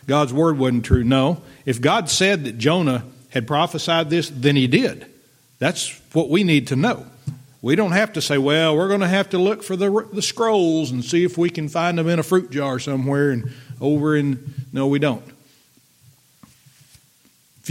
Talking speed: 195 wpm